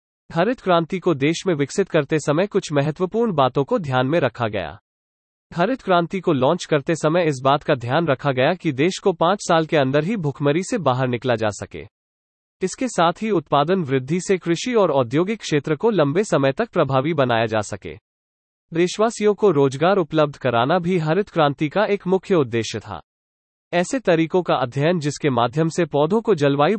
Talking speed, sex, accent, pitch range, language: 155 wpm, male, Indian, 130-180 Hz, English